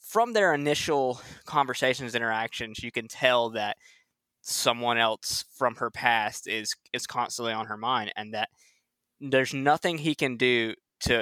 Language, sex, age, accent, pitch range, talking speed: English, male, 20-39, American, 115-130 Hz, 150 wpm